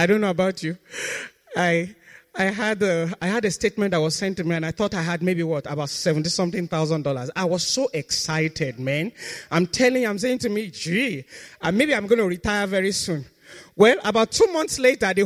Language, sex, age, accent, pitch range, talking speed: English, male, 30-49, Nigerian, 160-245 Hz, 225 wpm